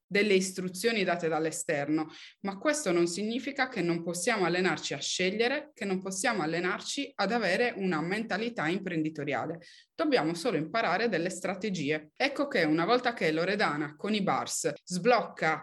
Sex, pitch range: female, 170-235 Hz